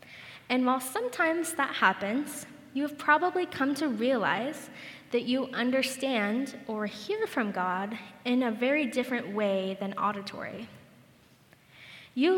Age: 10-29